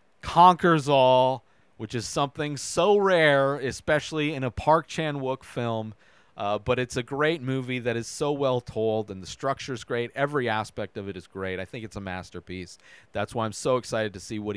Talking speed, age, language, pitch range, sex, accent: 200 wpm, 40-59, English, 110-155 Hz, male, American